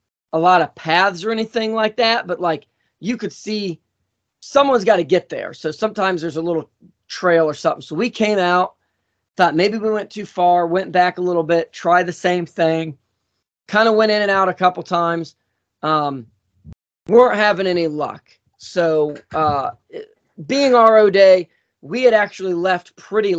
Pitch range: 150-190 Hz